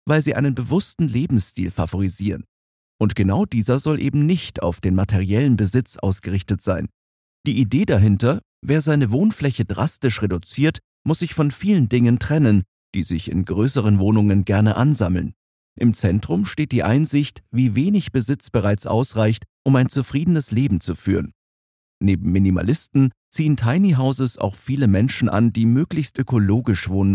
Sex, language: male, German